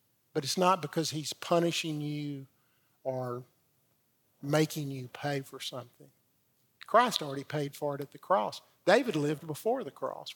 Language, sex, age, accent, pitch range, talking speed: English, male, 50-69, American, 145-185 Hz, 150 wpm